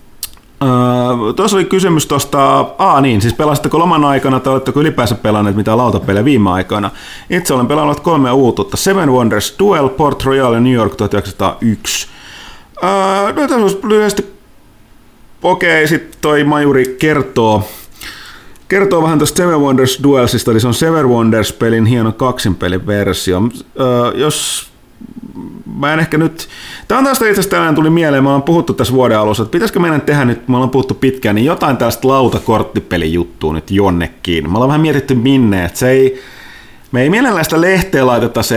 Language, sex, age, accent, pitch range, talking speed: Finnish, male, 30-49, native, 105-145 Hz, 170 wpm